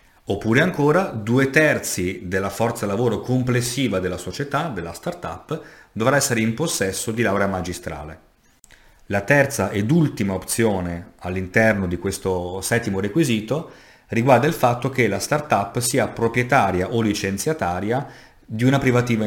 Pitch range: 95-120 Hz